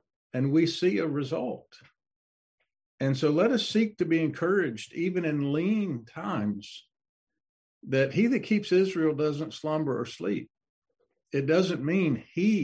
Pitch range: 115-160 Hz